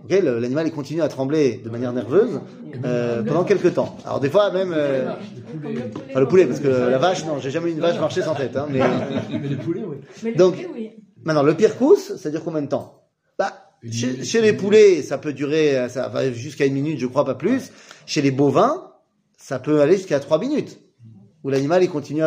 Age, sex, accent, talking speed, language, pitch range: 30-49, male, French, 210 wpm, French, 135-205 Hz